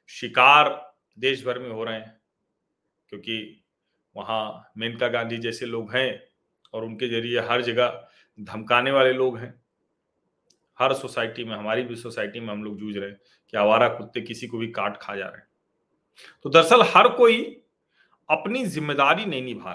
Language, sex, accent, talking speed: Hindi, male, native, 165 wpm